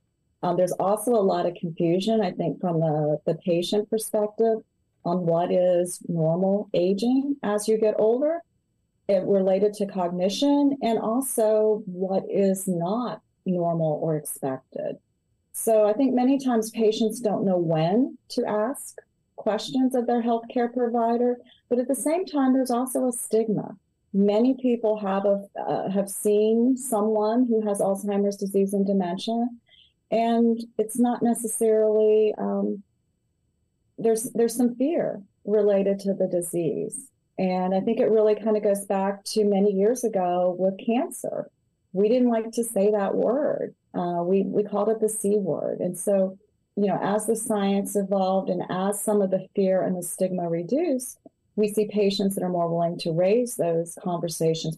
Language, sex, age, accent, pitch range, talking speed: English, female, 40-59, American, 185-230 Hz, 160 wpm